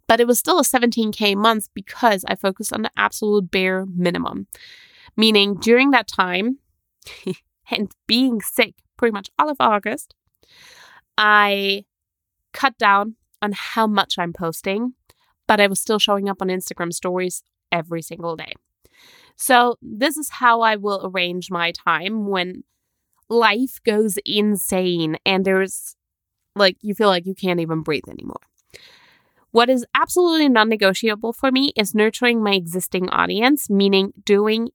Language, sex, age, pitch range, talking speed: English, female, 20-39, 190-240 Hz, 145 wpm